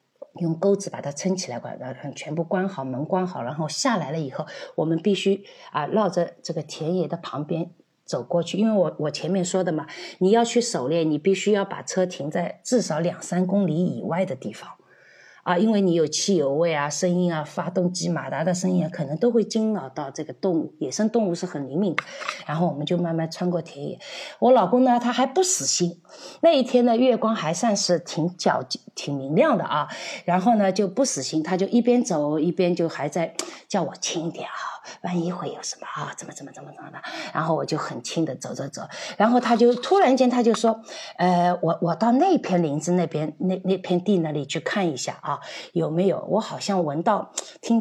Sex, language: female, Chinese